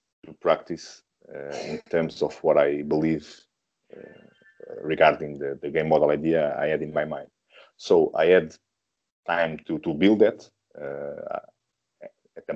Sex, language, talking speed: male, English, 155 wpm